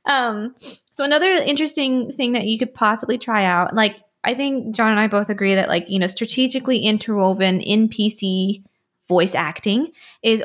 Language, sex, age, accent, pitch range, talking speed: English, female, 20-39, American, 190-240 Hz, 165 wpm